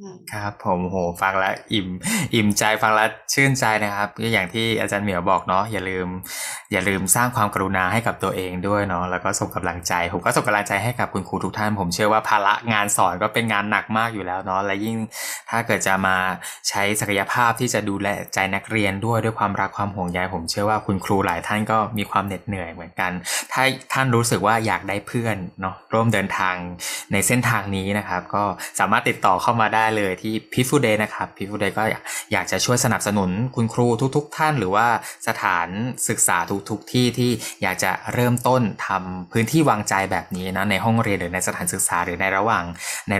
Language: Thai